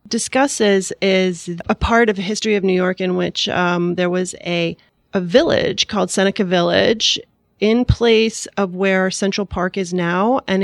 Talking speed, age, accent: 170 wpm, 30-49, American